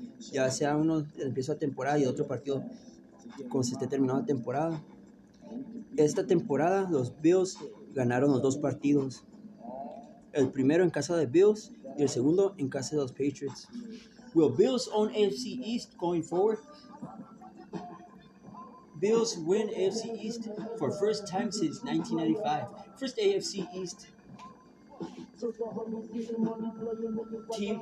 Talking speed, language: 125 wpm, Spanish